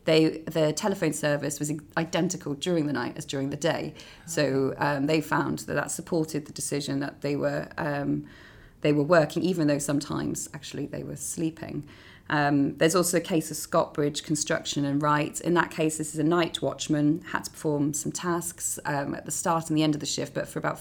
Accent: British